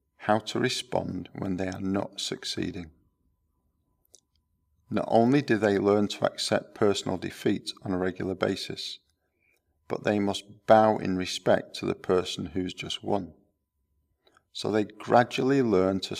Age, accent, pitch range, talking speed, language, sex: 50-69, British, 85-105 Hz, 140 wpm, English, male